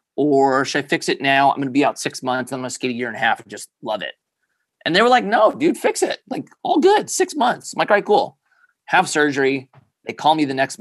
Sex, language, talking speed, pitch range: male, English, 280 wpm, 125-160 Hz